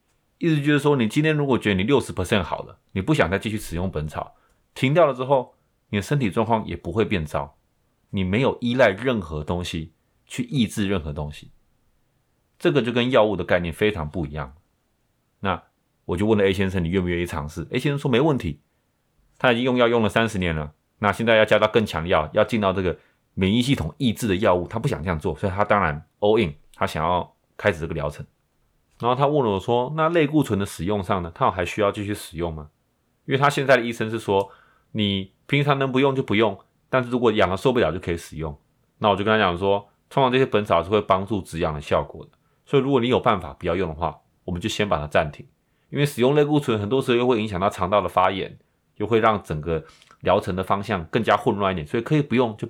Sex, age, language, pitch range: male, 30-49, Chinese, 90-120 Hz